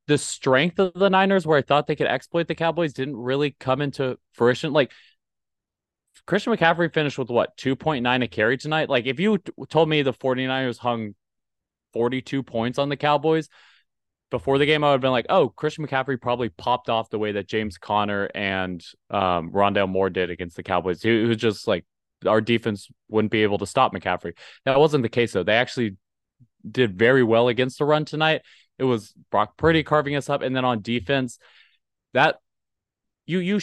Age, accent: 20-39, American